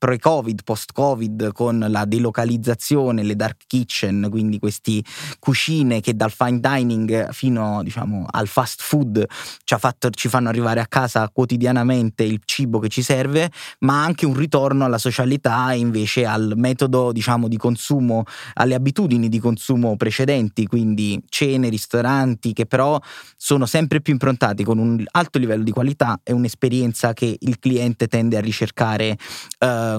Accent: native